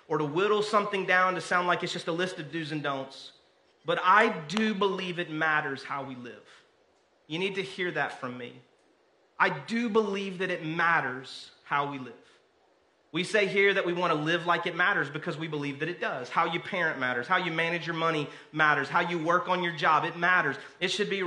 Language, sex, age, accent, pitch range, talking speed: English, male, 30-49, American, 155-200 Hz, 225 wpm